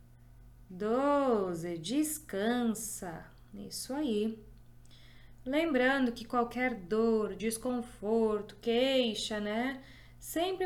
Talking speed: 70 wpm